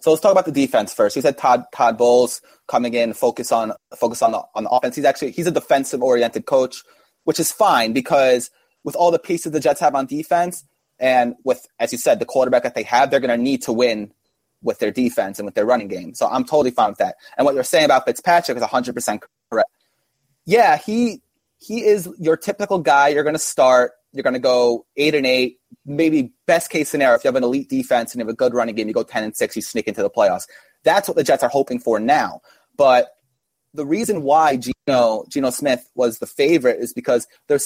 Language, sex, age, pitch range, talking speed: English, male, 20-39, 125-175 Hz, 235 wpm